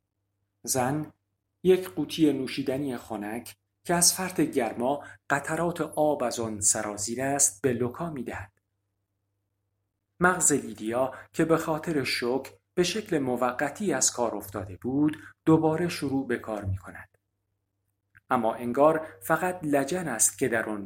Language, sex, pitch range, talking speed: Persian, male, 100-145 Hz, 125 wpm